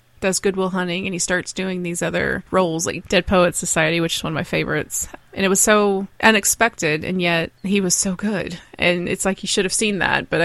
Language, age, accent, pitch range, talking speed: English, 20-39, American, 175-210 Hz, 230 wpm